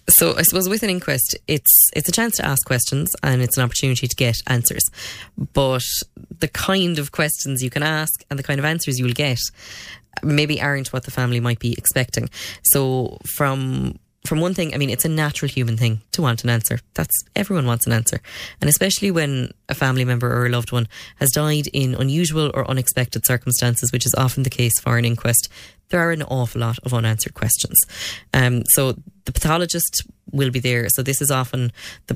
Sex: female